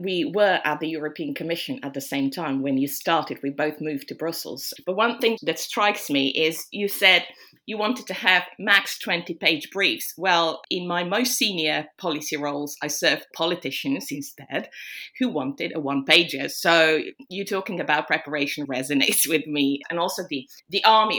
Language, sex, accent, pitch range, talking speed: English, female, British, 145-200 Hz, 175 wpm